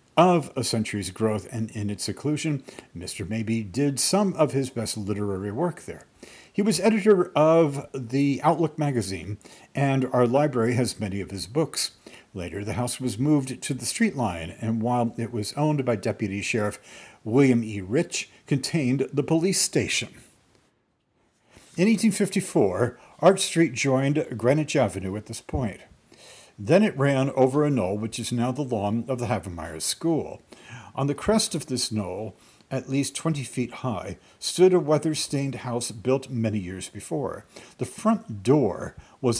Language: English